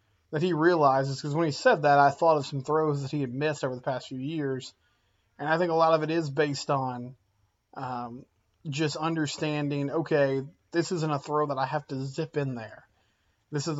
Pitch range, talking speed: 125-155 Hz, 215 wpm